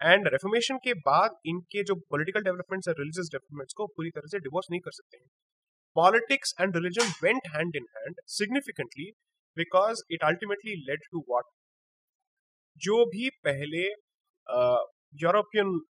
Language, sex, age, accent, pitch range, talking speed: Hindi, male, 30-49, native, 160-235 Hz, 140 wpm